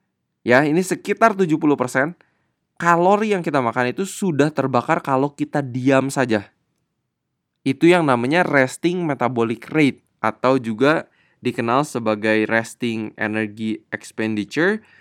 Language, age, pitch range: Indonesian, 20-39, 115-165 Hz